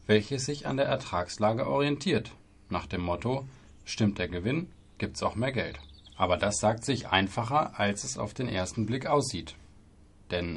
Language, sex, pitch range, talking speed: German, male, 95-125 Hz, 165 wpm